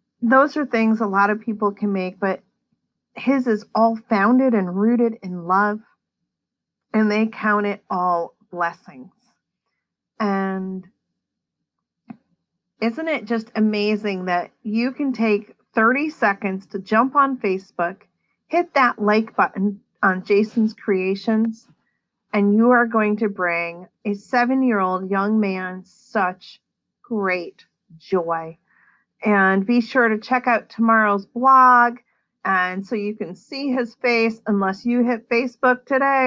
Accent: American